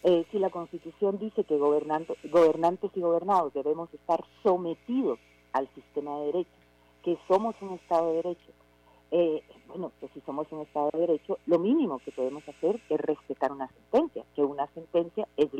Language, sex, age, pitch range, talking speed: Spanish, female, 50-69, 150-200 Hz, 175 wpm